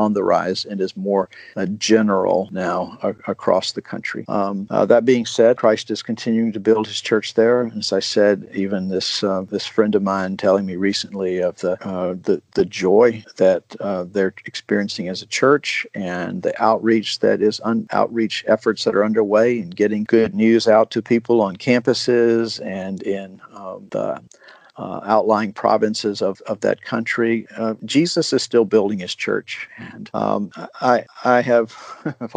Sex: male